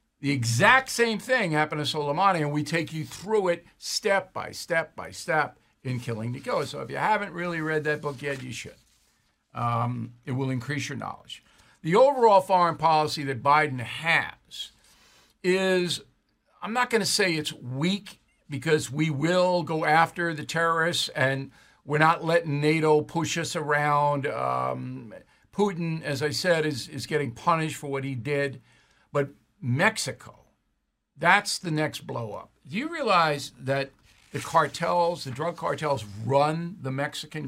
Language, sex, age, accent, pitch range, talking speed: English, male, 60-79, American, 140-175 Hz, 160 wpm